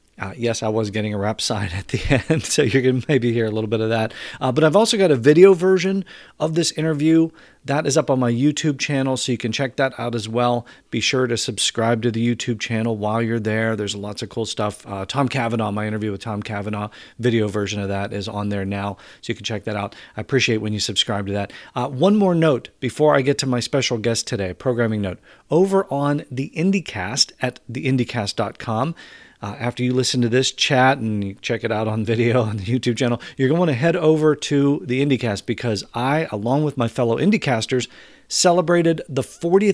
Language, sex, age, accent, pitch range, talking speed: English, male, 40-59, American, 115-140 Hz, 225 wpm